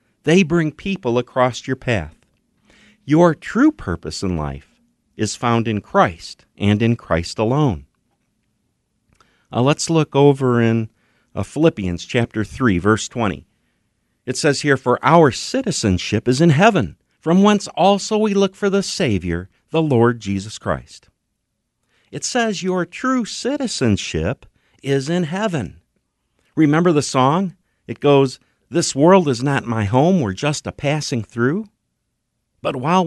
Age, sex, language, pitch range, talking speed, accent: 50-69, male, English, 105-160 Hz, 140 wpm, American